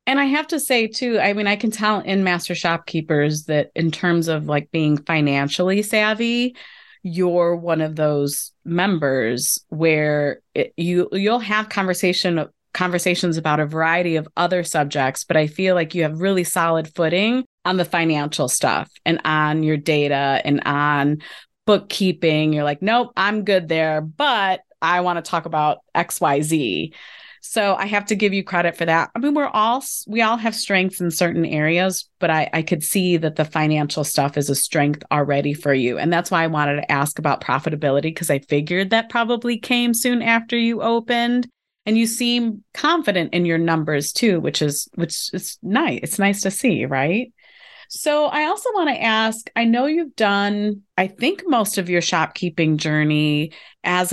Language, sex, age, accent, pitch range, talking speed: English, female, 30-49, American, 155-215 Hz, 185 wpm